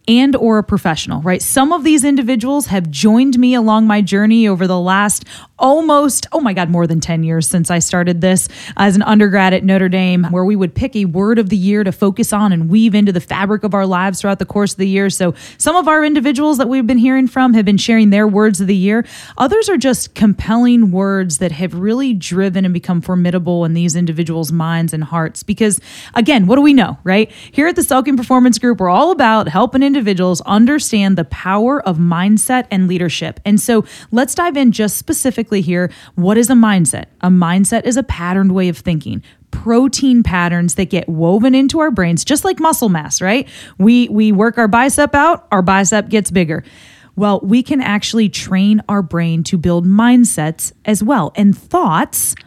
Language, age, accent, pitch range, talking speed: English, 20-39, American, 180-245 Hz, 205 wpm